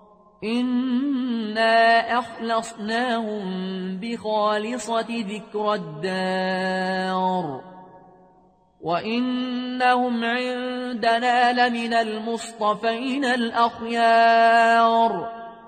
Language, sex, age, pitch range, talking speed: Arabic, male, 30-49, 210-245 Hz, 40 wpm